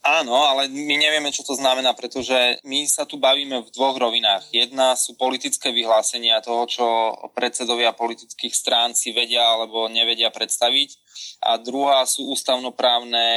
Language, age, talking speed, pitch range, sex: Slovak, 20-39, 150 wpm, 115-135 Hz, male